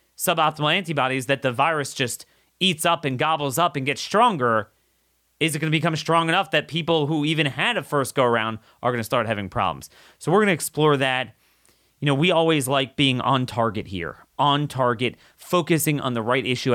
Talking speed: 205 wpm